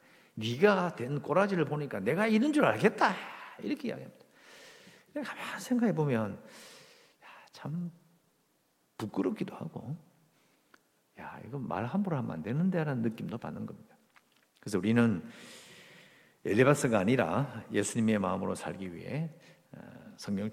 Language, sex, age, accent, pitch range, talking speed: English, male, 60-79, Korean, 95-155 Hz, 100 wpm